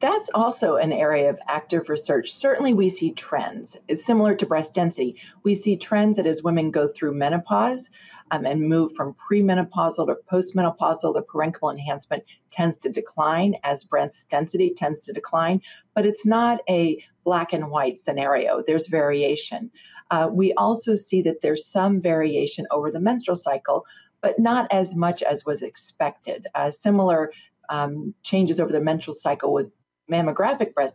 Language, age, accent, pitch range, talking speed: English, 40-59, American, 155-205 Hz, 165 wpm